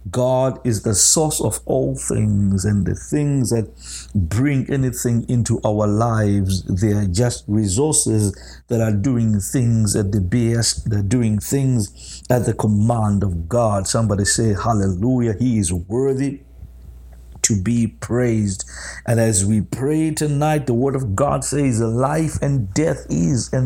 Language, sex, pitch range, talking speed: English, male, 105-130 Hz, 150 wpm